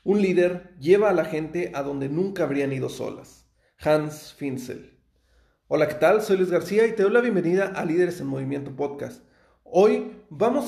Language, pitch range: Spanish, 145-190 Hz